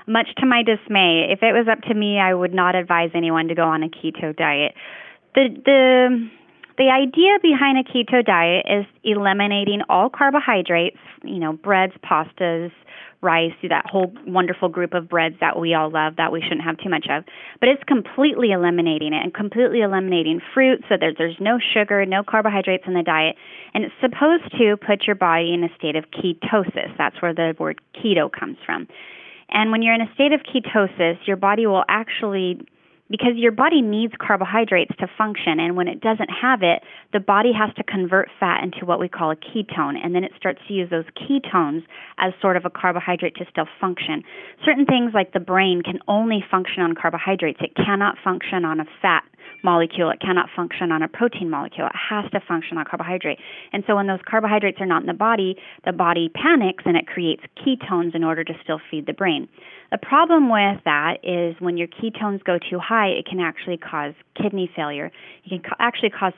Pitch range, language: 170-220 Hz, English